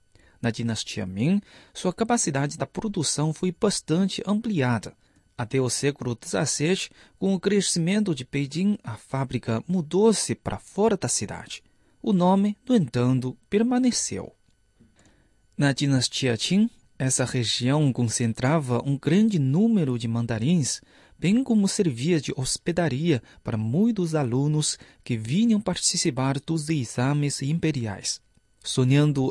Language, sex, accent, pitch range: Chinese, male, Brazilian, 130-185 Hz